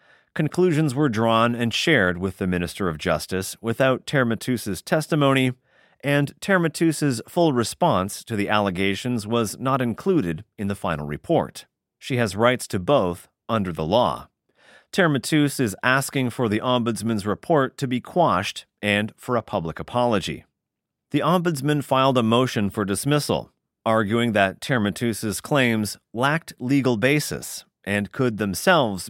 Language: English